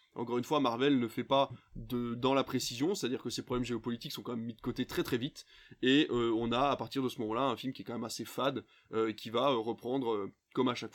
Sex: male